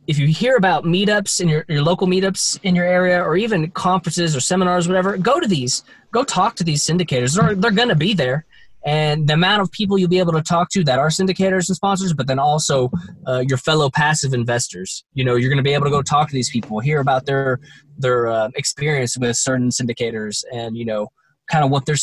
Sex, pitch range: male, 130-180 Hz